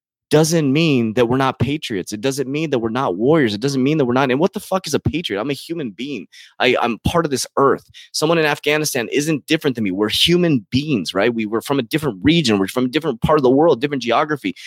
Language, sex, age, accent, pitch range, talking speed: English, male, 20-39, American, 110-150 Hz, 255 wpm